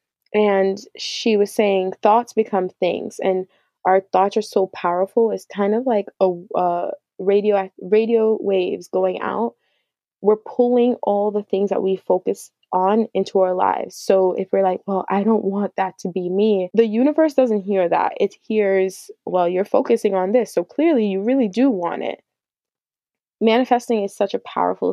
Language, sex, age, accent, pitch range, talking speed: English, female, 20-39, American, 190-230 Hz, 175 wpm